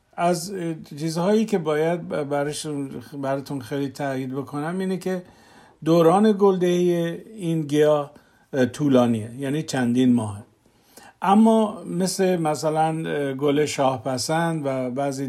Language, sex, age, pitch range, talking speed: Persian, male, 50-69, 130-165 Hz, 105 wpm